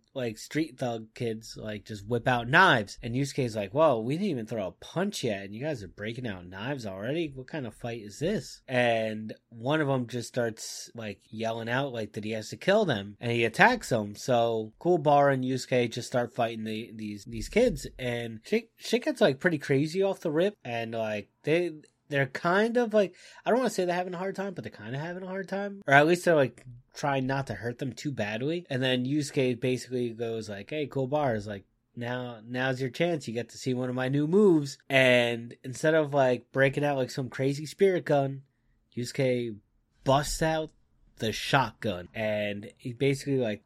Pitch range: 115-150 Hz